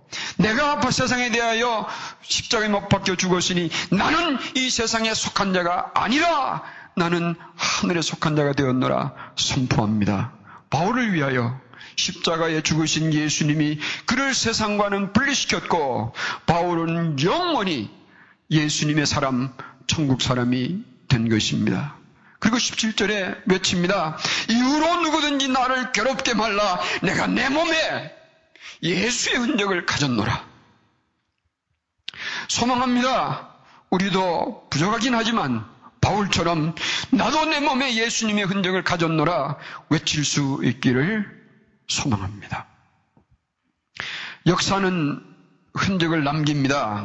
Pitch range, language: 155-230 Hz, Korean